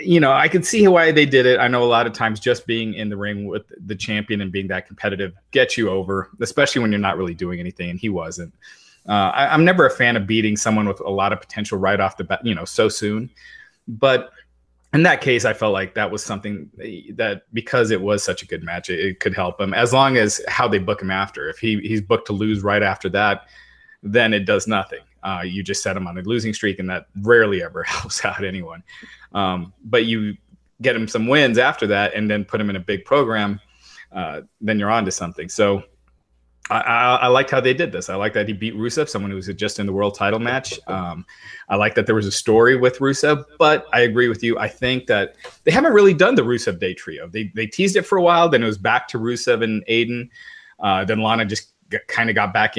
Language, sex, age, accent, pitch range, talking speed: English, male, 30-49, American, 100-120 Hz, 250 wpm